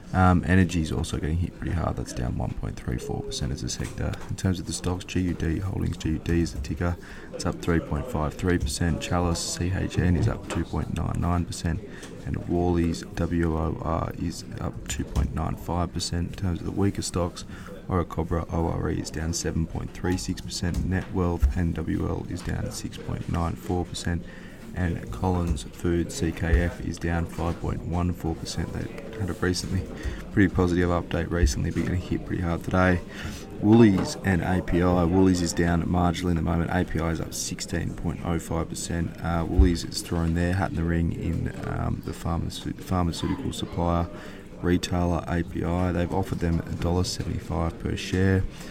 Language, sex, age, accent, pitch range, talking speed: English, male, 20-39, Australian, 85-95 Hz, 145 wpm